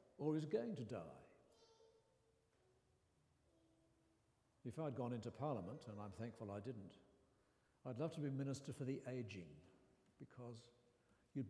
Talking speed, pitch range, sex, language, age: 130 wpm, 120-160 Hz, male, English, 60-79